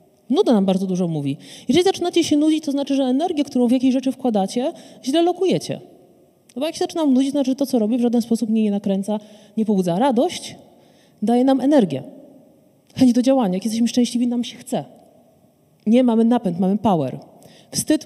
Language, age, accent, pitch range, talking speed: Polish, 30-49, native, 200-260 Hz, 195 wpm